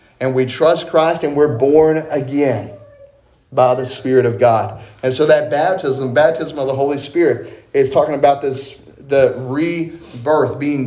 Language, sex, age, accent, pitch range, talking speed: English, male, 30-49, American, 125-150 Hz, 160 wpm